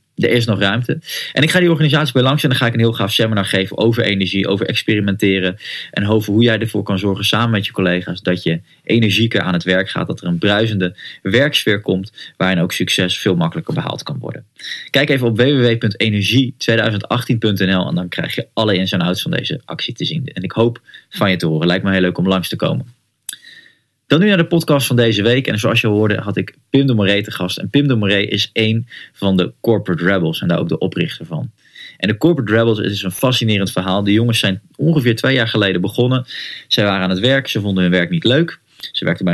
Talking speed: 235 wpm